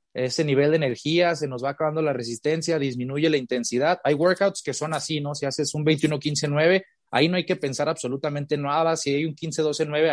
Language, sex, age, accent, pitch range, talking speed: Spanish, male, 30-49, Mexican, 130-160 Hz, 200 wpm